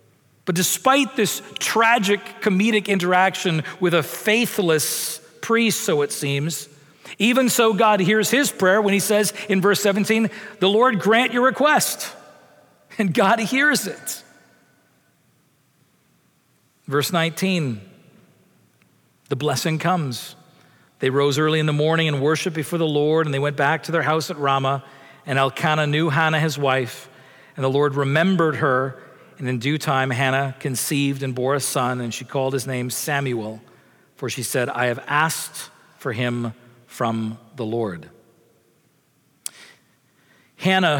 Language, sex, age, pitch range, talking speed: English, male, 40-59, 135-190 Hz, 145 wpm